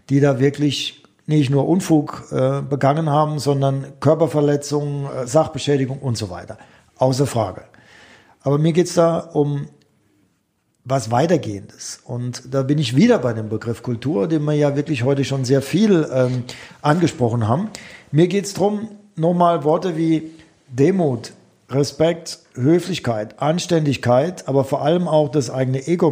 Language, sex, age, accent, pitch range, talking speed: German, male, 50-69, German, 135-170 Hz, 145 wpm